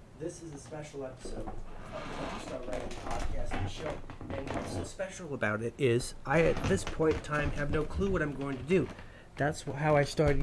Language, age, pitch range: English, 30-49, 120-150 Hz